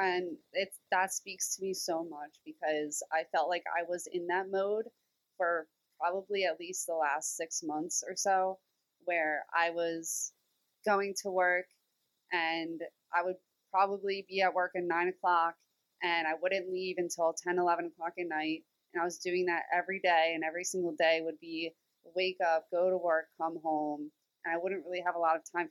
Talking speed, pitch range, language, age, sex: 190 wpm, 165-195 Hz, English, 20-39, female